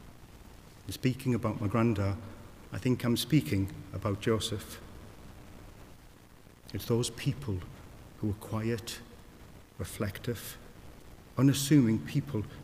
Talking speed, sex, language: 85 wpm, male, English